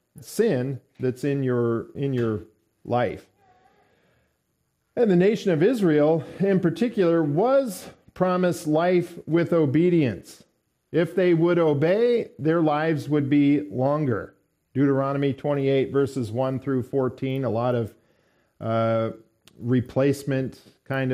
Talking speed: 115 wpm